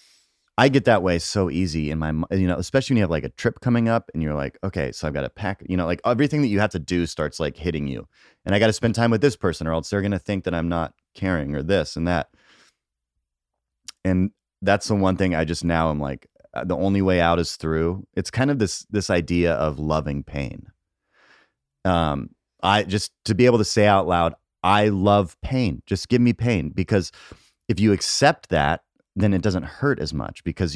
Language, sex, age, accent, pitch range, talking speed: English, male, 30-49, American, 80-100 Hz, 230 wpm